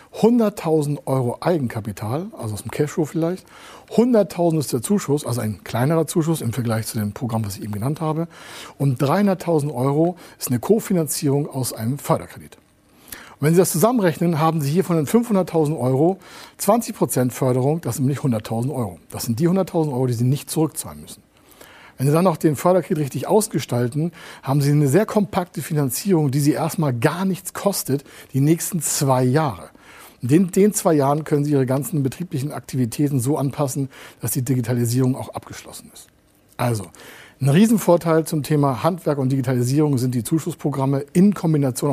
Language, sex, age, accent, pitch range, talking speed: German, male, 60-79, German, 125-165 Hz, 170 wpm